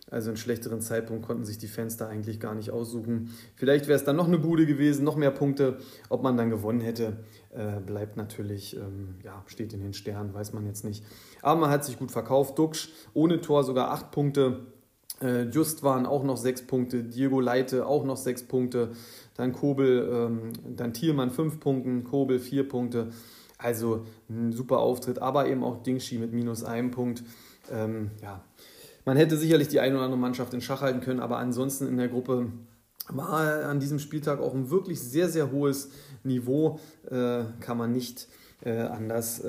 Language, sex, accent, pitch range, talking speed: German, male, German, 115-140 Hz, 185 wpm